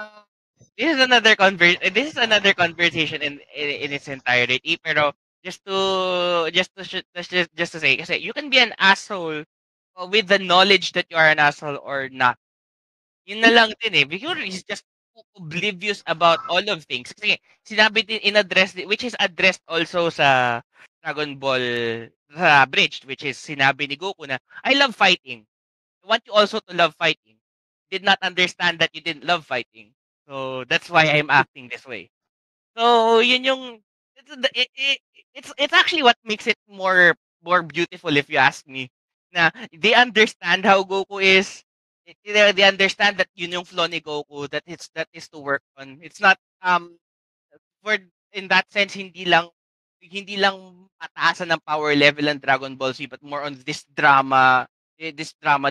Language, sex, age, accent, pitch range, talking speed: Filipino, male, 20-39, native, 150-205 Hz, 170 wpm